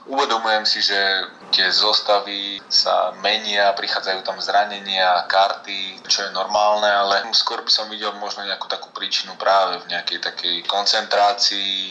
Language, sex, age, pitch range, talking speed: Slovak, male, 20-39, 95-105 Hz, 140 wpm